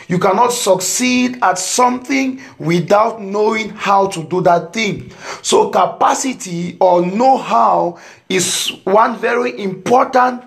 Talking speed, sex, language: 115 wpm, male, English